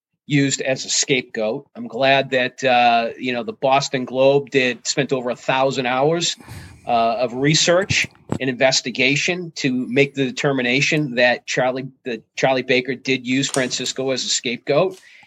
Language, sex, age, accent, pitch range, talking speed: English, male, 40-59, American, 125-140 Hz, 155 wpm